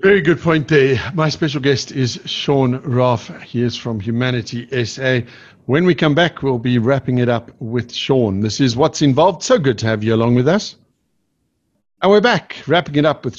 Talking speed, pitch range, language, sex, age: 200 wpm, 120-145 Hz, English, male, 50-69